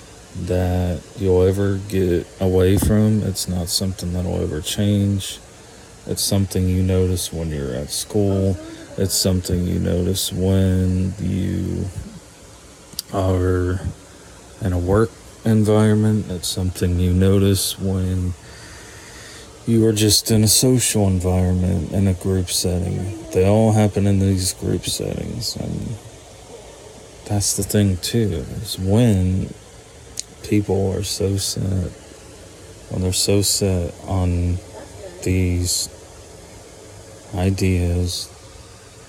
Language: English